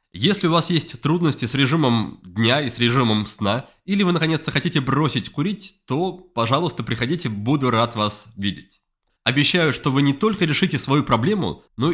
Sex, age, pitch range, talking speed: male, 20-39, 120-170 Hz, 170 wpm